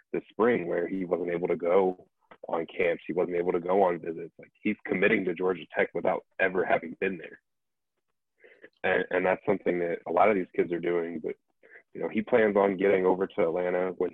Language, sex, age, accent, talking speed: English, male, 20-39, American, 215 wpm